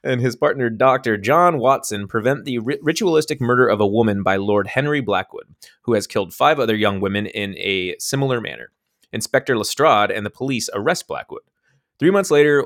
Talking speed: 185 wpm